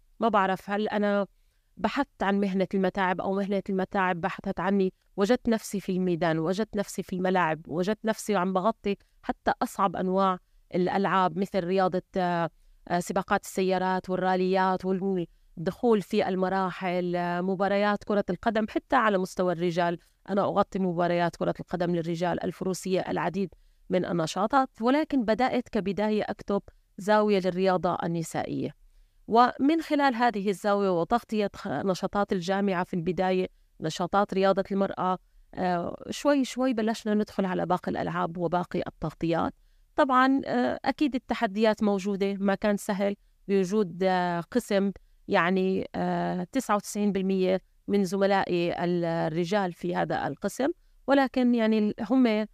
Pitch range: 185-210 Hz